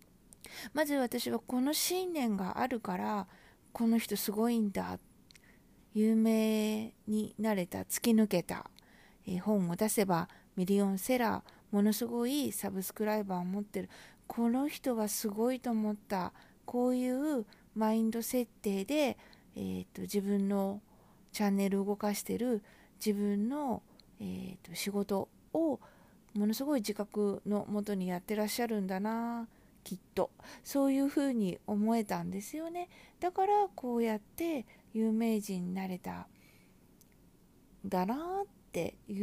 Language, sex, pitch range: Japanese, female, 195-240 Hz